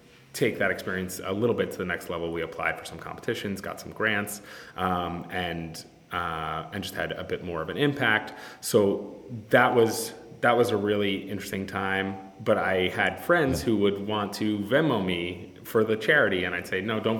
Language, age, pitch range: English, 30-49, 90-105 Hz